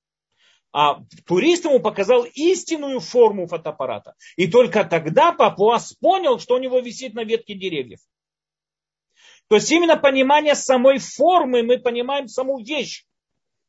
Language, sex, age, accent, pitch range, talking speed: Russian, male, 40-59, native, 200-280 Hz, 125 wpm